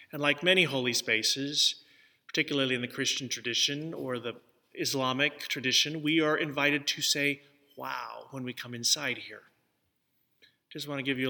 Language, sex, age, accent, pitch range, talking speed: English, male, 30-49, American, 125-150 Hz, 160 wpm